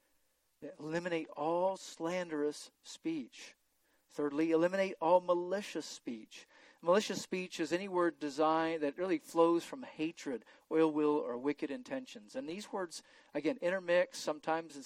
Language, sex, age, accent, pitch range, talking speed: English, male, 50-69, American, 150-210 Hz, 130 wpm